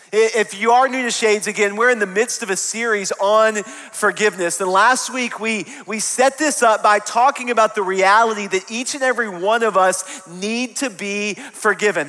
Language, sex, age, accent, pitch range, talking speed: English, male, 30-49, American, 165-220 Hz, 200 wpm